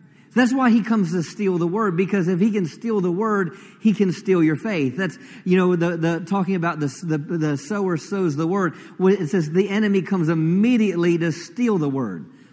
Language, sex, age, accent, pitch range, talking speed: English, male, 40-59, American, 160-210 Hz, 210 wpm